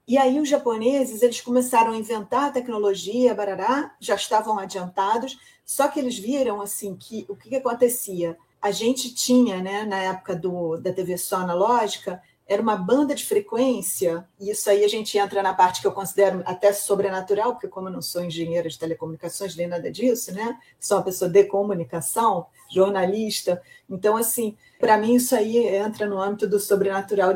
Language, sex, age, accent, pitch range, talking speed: Portuguese, female, 40-59, Brazilian, 195-245 Hz, 180 wpm